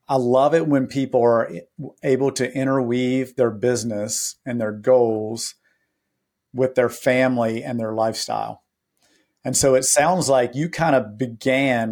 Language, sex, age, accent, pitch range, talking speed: English, male, 50-69, American, 115-135 Hz, 145 wpm